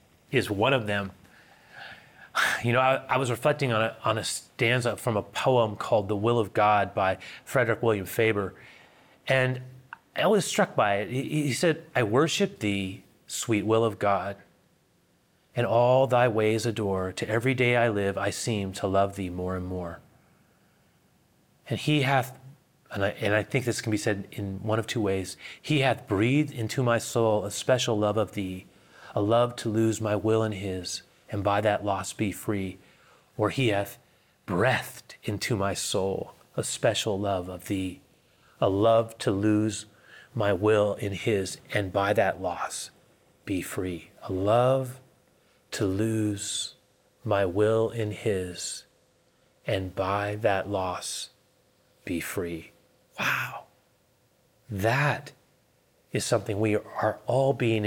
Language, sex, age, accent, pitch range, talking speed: English, male, 30-49, American, 100-120 Hz, 155 wpm